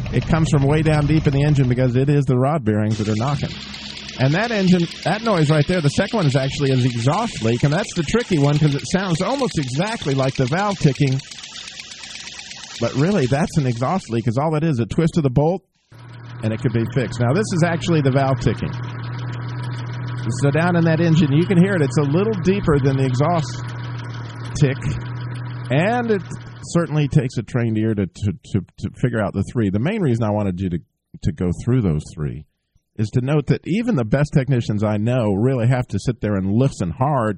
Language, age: English, 50-69